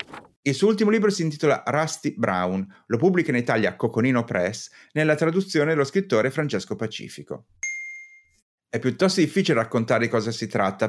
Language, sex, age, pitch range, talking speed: Italian, male, 30-49, 120-175 Hz, 155 wpm